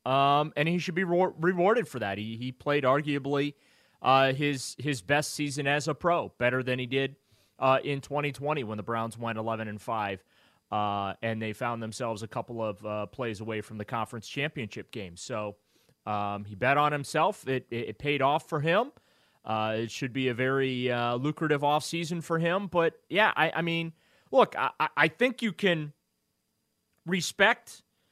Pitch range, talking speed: 115-155 Hz, 185 wpm